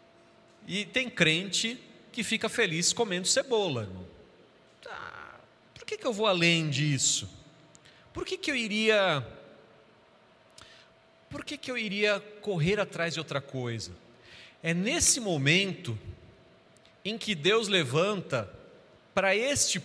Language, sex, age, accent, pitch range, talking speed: Portuguese, male, 40-59, Brazilian, 155-225 Hz, 125 wpm